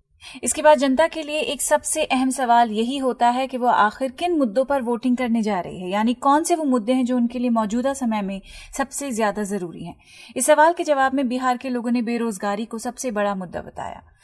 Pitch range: 225-285 Hz